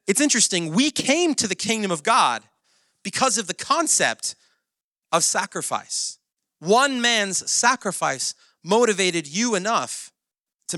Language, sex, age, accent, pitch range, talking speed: English, male, 30-49, American, 140-225 Hz, 120 wpm